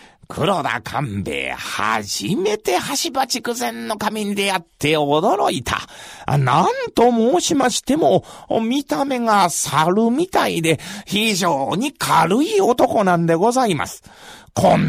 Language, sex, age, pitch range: Japanese, male, 40-59, 170-250 Hz